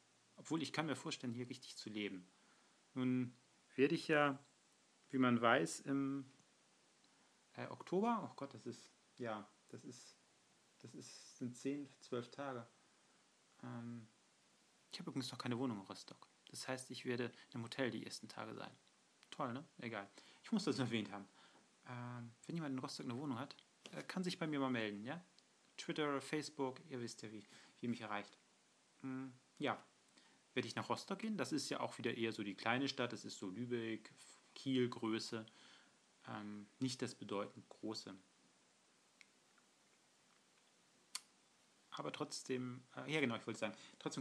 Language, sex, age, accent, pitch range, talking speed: German, male, 40-59, German, 115-140 Hz, 165 wpm